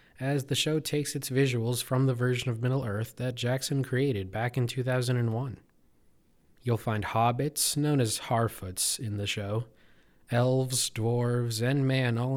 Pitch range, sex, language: 110-135 Hz, male, English